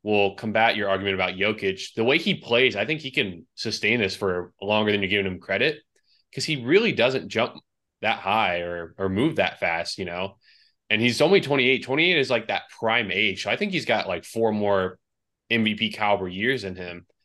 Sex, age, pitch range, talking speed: male, 20-39, 100-120 Hz, 210 wpm